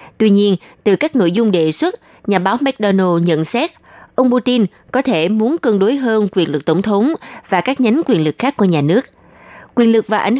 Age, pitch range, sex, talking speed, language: 20-39, 180-245 Hz, female, 220 wpm, Vietnamese